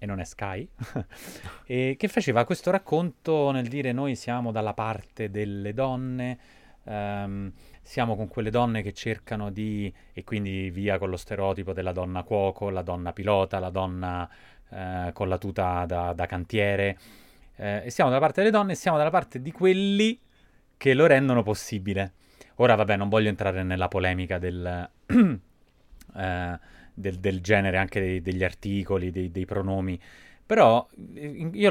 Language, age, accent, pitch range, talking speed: Italian, 20-39, native, 95-130 Hz, 160 wpm